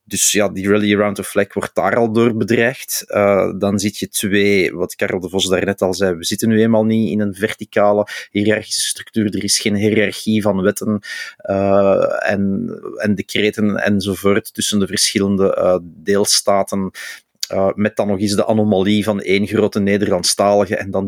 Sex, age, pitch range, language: male, 30-49, 100-110 Hz, Dutch